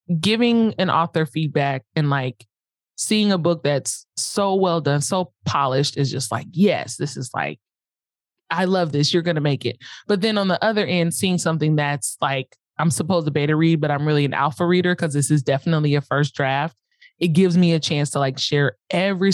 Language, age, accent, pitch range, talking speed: English, 20-39, American, 145-180 Hz, 210 wpm